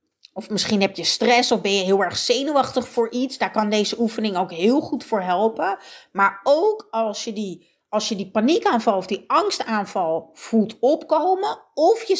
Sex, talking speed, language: female, 175 wpm, Dutch